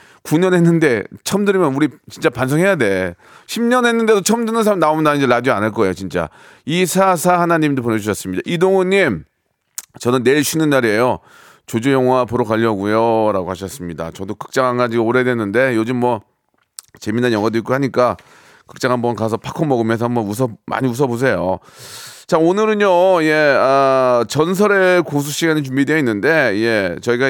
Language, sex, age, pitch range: Korean, male, 30-49, 125-180 Hz